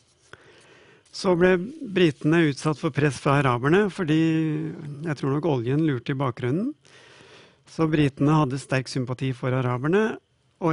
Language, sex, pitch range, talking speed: English, male, 135-170 Hz, 135 wpm